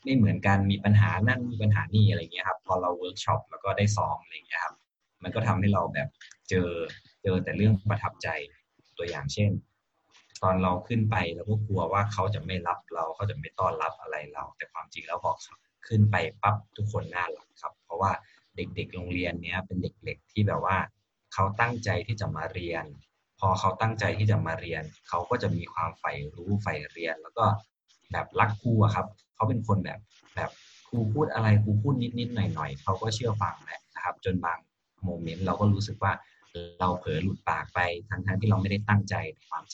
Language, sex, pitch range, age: Thai, male, 95-110 Hz, 20-39